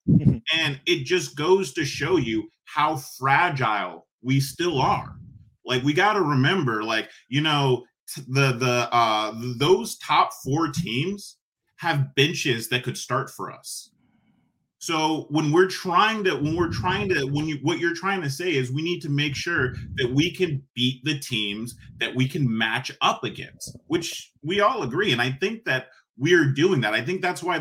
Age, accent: 30-49, American